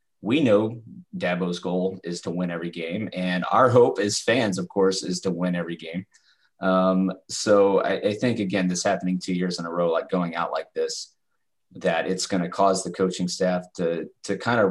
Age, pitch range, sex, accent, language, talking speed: 30-49, 90-110 Hz, male, American, English, 210 wpm